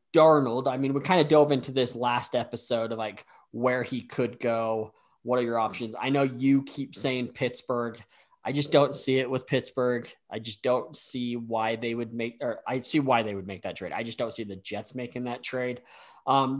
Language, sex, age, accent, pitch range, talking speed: English, male, 20-39, American, 115-135 Hz, 220 wpm